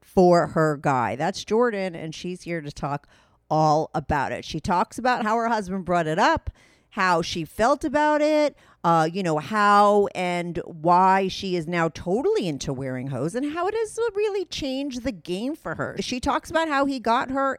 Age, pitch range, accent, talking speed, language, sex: 40-59, 155-230 Hz, American, 195 wpm, English, female